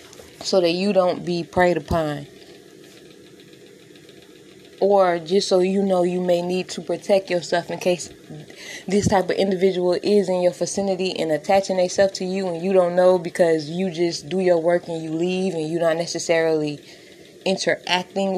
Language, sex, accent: English, female, American